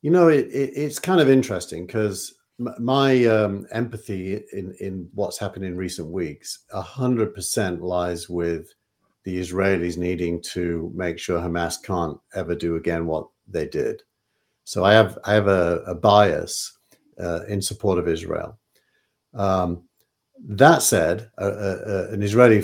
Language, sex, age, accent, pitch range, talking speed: English, male, 50-69, British, 90-110 Hz, 135 wpm